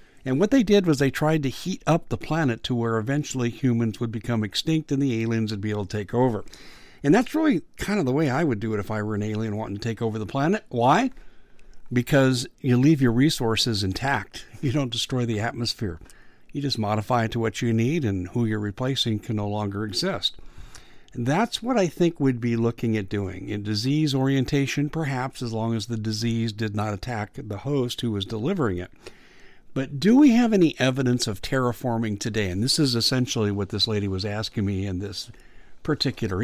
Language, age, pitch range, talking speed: English, 60-79, 110-145 Hz, 210 wpm